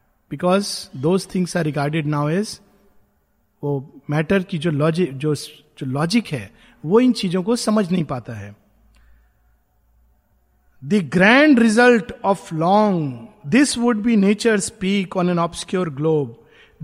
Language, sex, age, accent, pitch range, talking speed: Hindi, male, 50-69, native, 150-210 Hz, 120 wpm